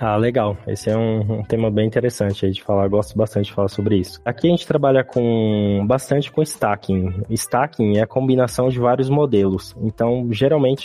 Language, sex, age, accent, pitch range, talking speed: Portuguese, male, 20-39, Brazilian, 105-125 Hz, 195 wpm